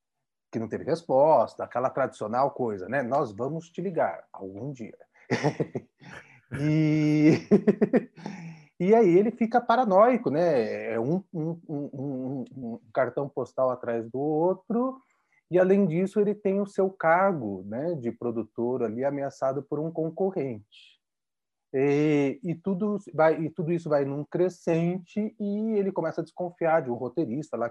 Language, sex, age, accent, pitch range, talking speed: Portuguese, male, 30-49, Brazilian, 135-205 Hz, 140 wpm